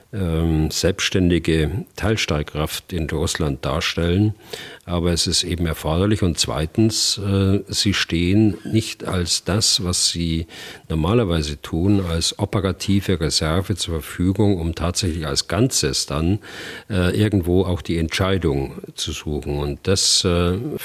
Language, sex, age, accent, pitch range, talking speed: German, male, 50-69, German, 80-100 Hz, 120 wpm